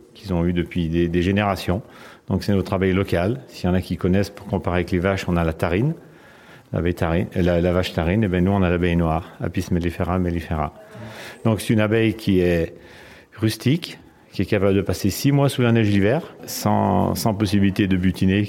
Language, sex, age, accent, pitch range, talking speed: French, male, 40-59, French, 90-110 Hz, 210 wpm